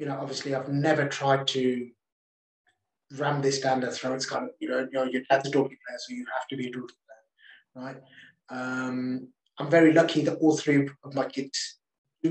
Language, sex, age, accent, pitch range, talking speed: English, male, 20-39, British, 135-170 Hz, 215 wpm